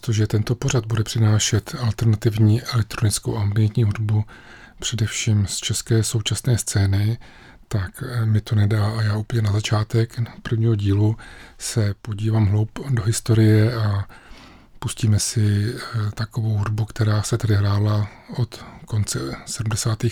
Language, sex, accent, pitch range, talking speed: Czech, male, native, 105-115 Hz, 130 wpm